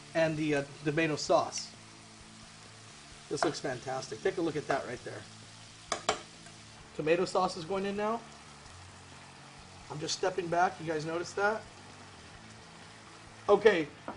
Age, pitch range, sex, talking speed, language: 30-49, 130-205 Hz, male, 125 wpm, English